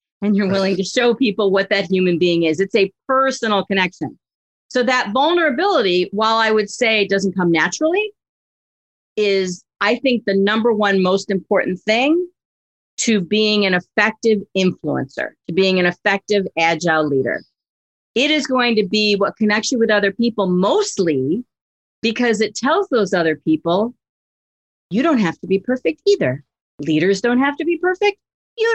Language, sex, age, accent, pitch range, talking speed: English, female, 40-59, American, 185-265 Hz, 165 wpm